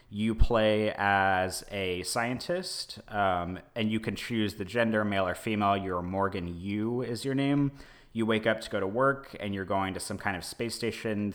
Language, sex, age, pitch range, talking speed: English, male, 30-49, 90-110 Hz, 195 wpm